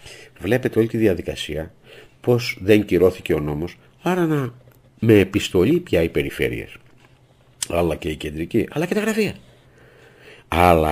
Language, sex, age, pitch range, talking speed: Greek, male, 50-69, 85-125 Hz, 135 wpm